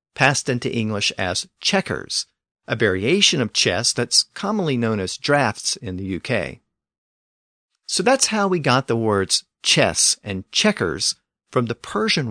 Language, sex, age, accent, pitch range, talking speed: English, male, 50-69, American, 100-155 Hz, 145 wpm